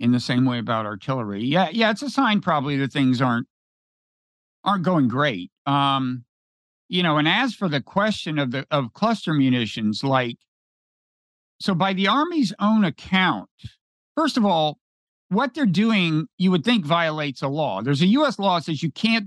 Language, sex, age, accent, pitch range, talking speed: English, male, 50-69, American, 135-185 Hz, 180 wpm